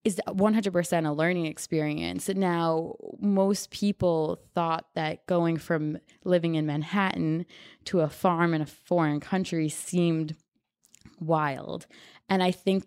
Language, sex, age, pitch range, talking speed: English, female, 20-39, 155-180 Hz, 125 wpm